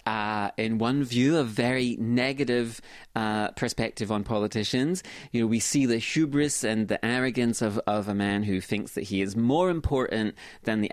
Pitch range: 105-145 Hz